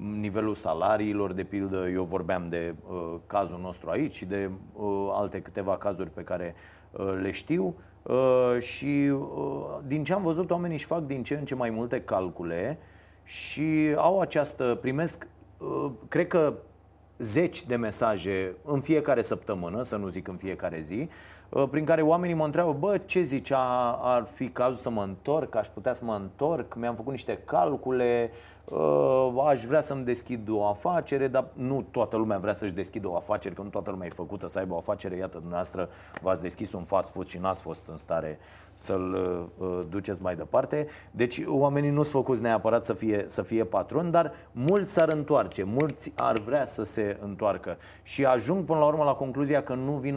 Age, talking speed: 30-49, 185 wpm